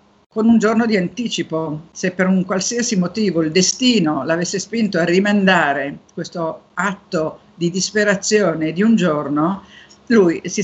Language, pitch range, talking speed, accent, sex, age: Italian, 170-210 Hz, 140 wpm, native, female, 50-69